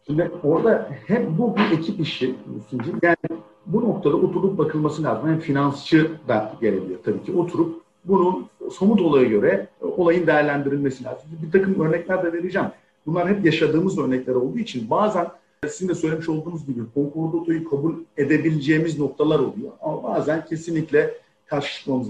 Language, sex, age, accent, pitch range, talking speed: Turkish, male, 50-69, native, 145-195 Hz, 145 wpm